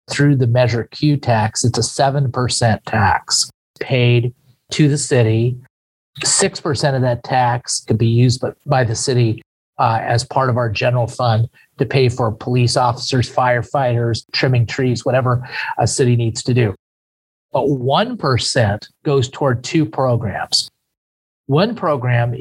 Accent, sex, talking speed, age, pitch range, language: American, male, 145 wpm, 40-59, 120-140 Hz, English